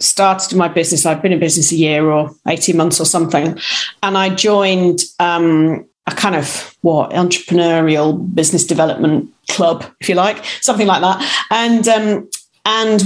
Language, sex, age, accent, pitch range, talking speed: English, female, 40-59, British, 175-215 Hz, 160 wpm